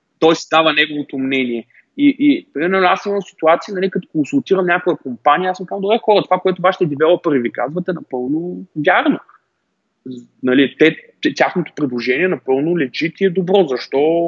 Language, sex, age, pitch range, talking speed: Bulgarian, male, 20-39, 130-185 Hz, 165 wpm